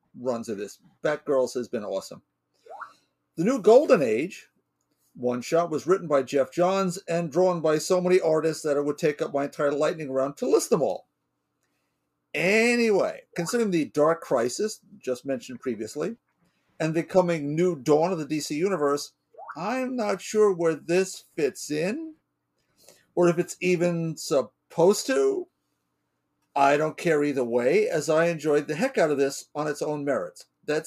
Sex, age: male, 50-69